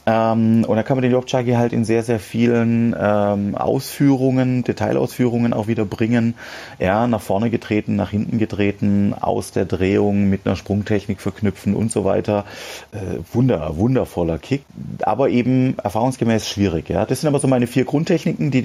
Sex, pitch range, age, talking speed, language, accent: male, 90-125 Hz, 30-49, 165 wpm, German, German